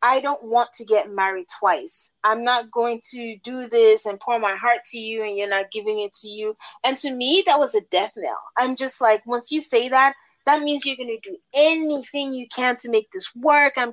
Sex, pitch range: female, 200-270 Hz